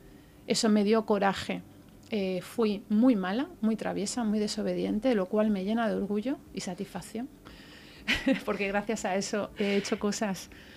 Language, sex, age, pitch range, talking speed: Spanish, female, 40-59, 195-235 Hz, 155 wpm